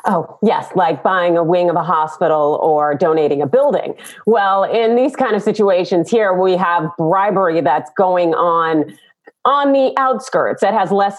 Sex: female